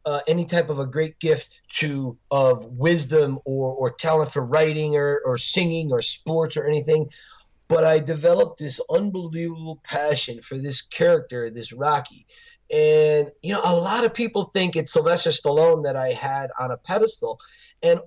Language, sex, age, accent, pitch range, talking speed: English, male, 30-49, American, 140-205 Hz, 170 wpm